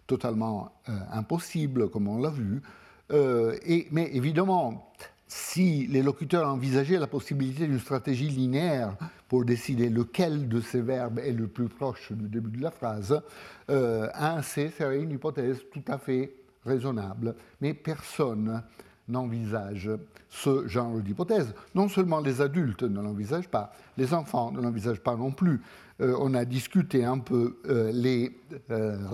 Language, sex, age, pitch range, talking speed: French, male, 60-79, 115-140 Hz, 150 wpm